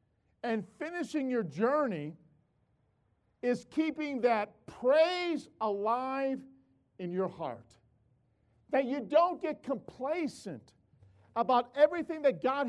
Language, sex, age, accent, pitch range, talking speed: English, male, 50-69, American, 170-280 Hz, 100 wpm